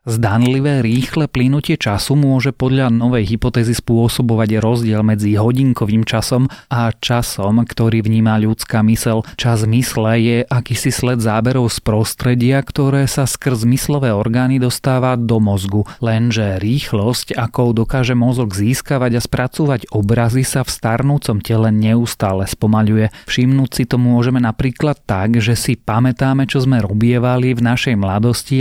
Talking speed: 135 wpm